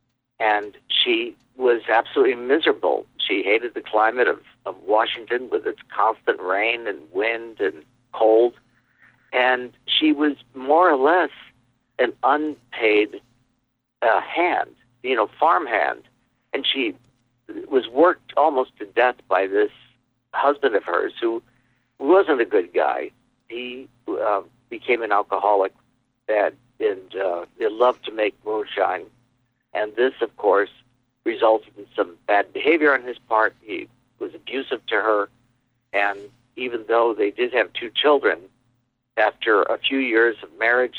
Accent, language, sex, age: American, English, male, 60-79